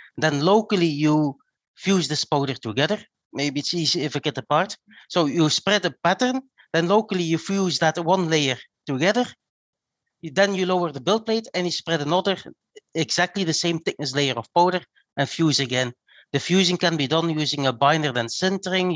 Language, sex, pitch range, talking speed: English, male, 150-190 Hz, 180 wpm